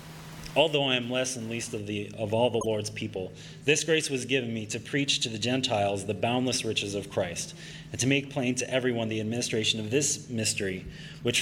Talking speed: 210 wpm